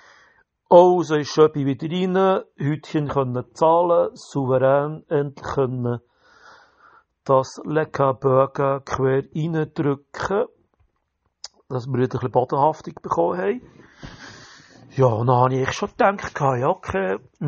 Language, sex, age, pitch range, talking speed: German, male, 60-79, 125-175 Hz, 115 wpm